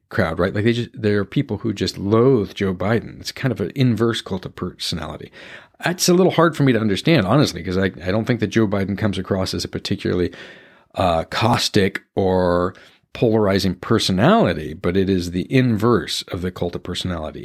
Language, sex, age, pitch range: English, male, 50-69, 95-140 Hz